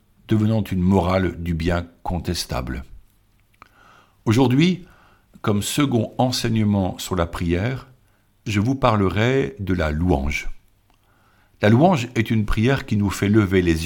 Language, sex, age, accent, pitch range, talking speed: French, male, 60-79, French, 90-120 Hz, 125 wpm